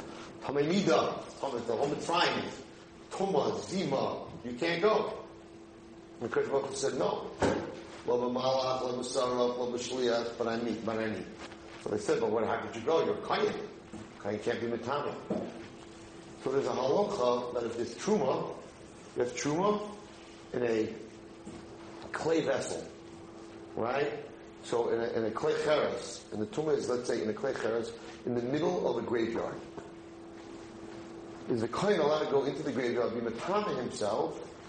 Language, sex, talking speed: English, male, 140 wpm